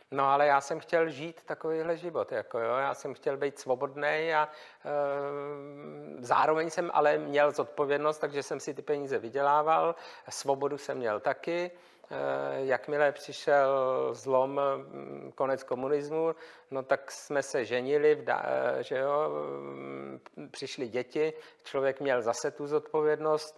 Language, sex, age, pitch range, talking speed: Czech, male, 50-69, 135-155 Hz, 125 wpm